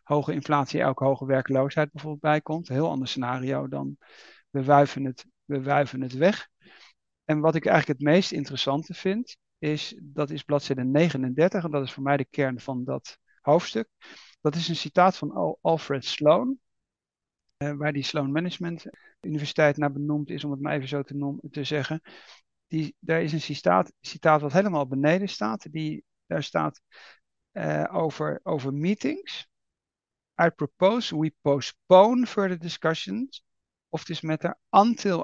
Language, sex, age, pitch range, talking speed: Dutch, male, 50-69, 140-180 Hz, 160 wpm